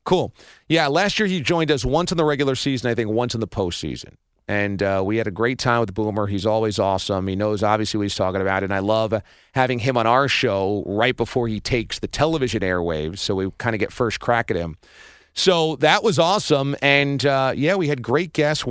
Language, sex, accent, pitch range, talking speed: English, male, American, 105-150 Hz, 230 wpm